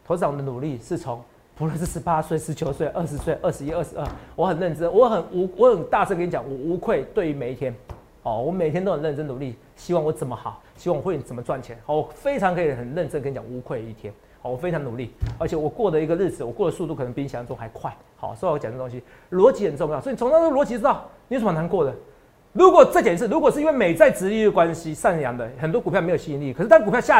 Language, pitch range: Chinese, 150-230 Hz